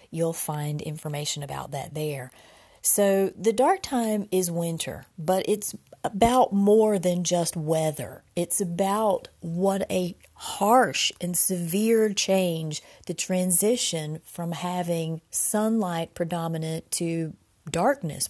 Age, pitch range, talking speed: 40-59, 160-200 Hz, 115 wpm